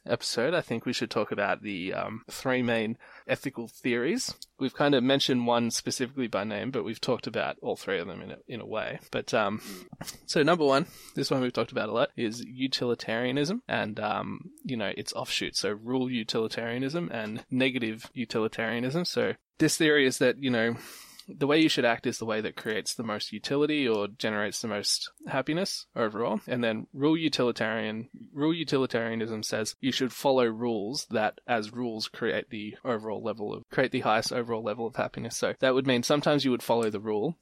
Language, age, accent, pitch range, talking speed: English, 20-39, Australian, 115-135 Hz, 195 wpm